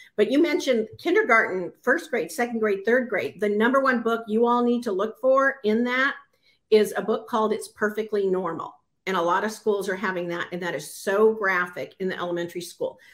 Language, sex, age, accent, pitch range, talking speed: English, female, 50-69, American, 200-250 Hz, 210 wpm